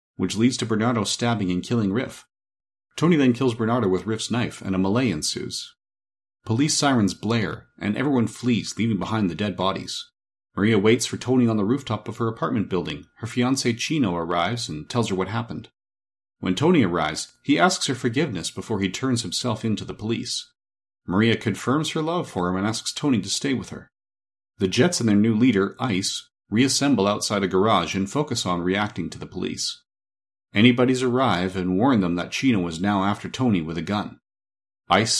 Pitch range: 95-120 Hz